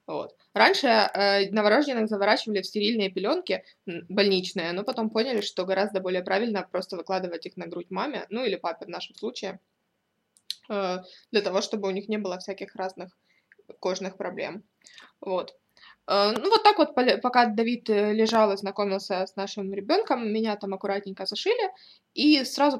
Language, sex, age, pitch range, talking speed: Russian, female, 20-39, 195-225 Hz, 160 wpm